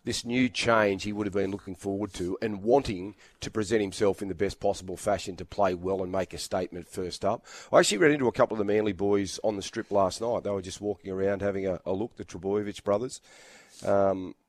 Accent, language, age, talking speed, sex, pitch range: Australian, English, 30-49, 235 wpm, male, 95-115 Hz